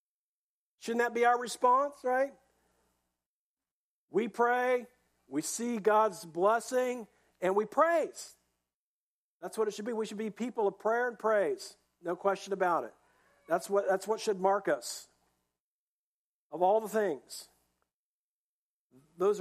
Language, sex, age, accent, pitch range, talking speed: English, male, 50-69, American, 160-225 Hz, 135 wpm